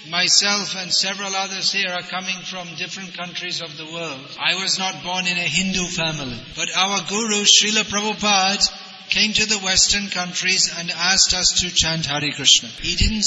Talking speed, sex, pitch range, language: 180 wpm, male, 175-200 Hz, English